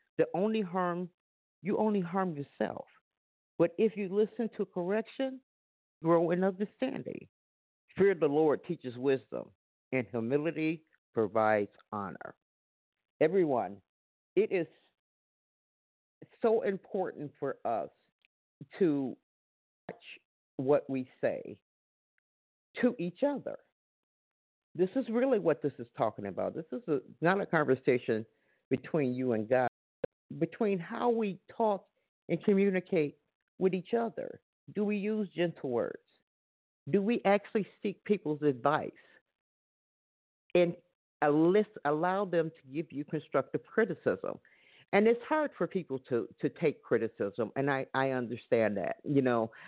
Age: 50-69